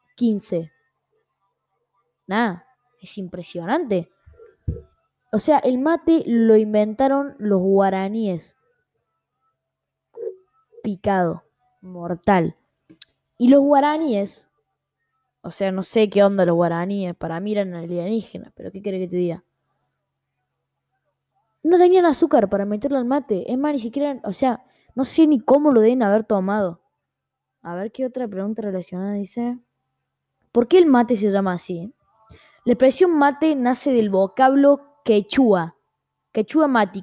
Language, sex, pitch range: Spanish, female, 190-260 Hz